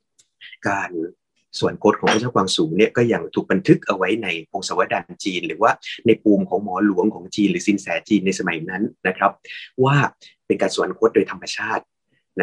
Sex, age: male, 30-49